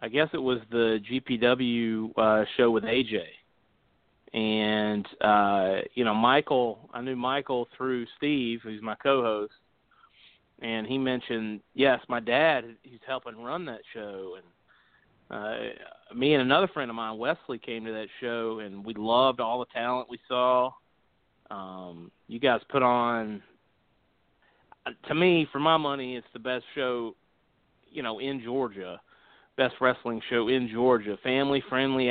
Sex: male